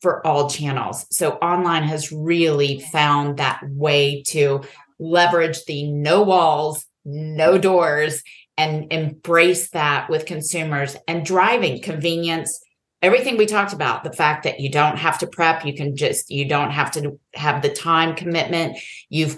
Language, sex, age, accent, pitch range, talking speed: English, female, 30-49, American, 150-185 Hz, 150 wpm